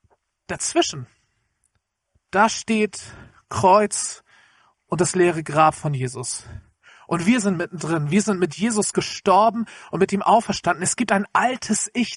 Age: 40-59